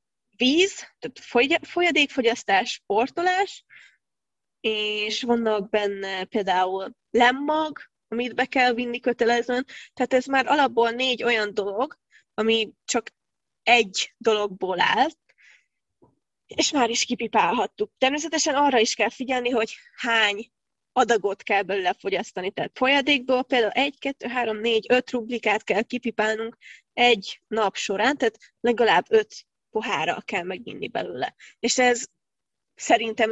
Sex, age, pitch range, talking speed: female, 20-39, 210-260 Hz, 115 wpm